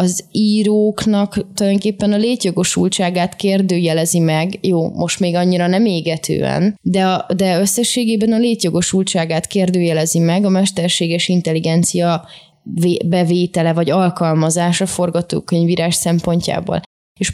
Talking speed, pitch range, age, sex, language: 100 wpm, 170-195 Hz, 20-39, female, Hungarian